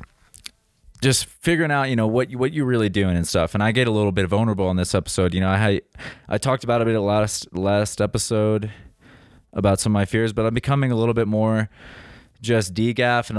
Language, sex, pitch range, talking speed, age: English, male, 95-115 Hz, 225 wpm, 20-39